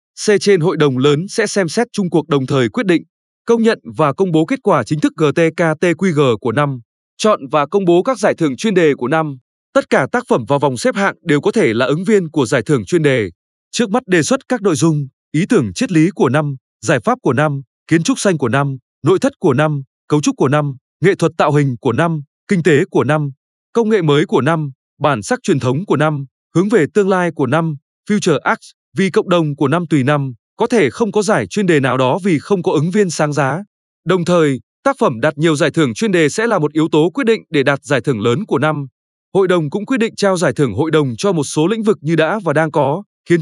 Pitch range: 145-200 Hz